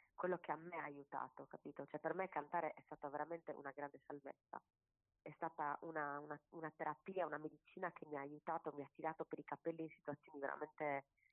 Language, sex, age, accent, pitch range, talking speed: Italian, female, 30-49, native, 145-165 Hz, 200 wpm